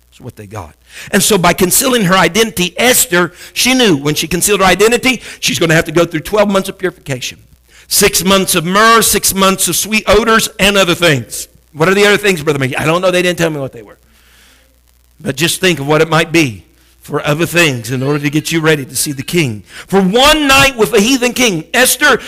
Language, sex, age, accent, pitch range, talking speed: English, male, 50-69, American, 155-240 Hz, 230 wpm